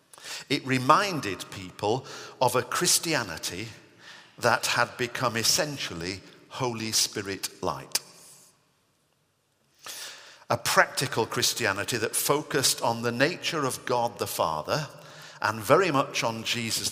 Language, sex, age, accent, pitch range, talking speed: English, male, 50-69, British, 105-145 Hz, 105 wpm